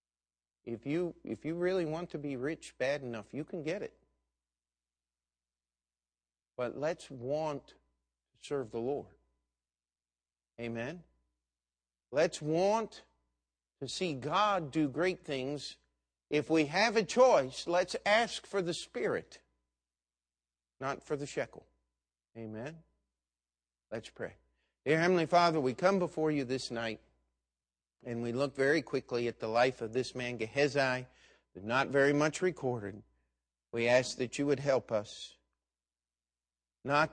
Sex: male